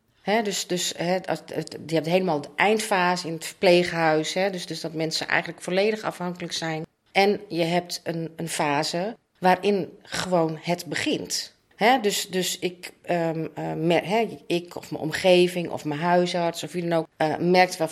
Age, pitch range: 40-59, 160-200 Hz